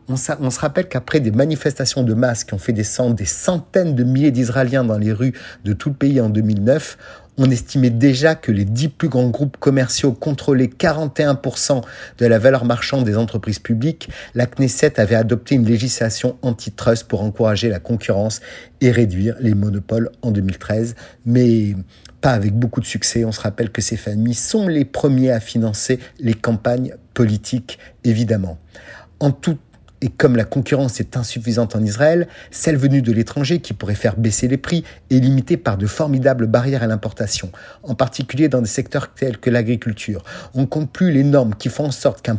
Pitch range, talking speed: 115-145 Hz, 185 wpm